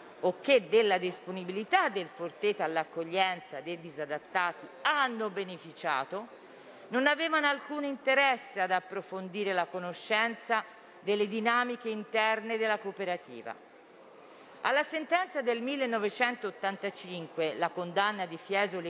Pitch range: 195-270 Hz